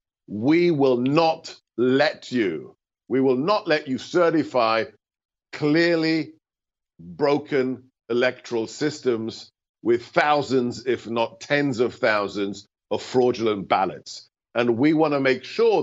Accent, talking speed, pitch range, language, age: British, 120 wpm, 115-155 Hz, English, 50-69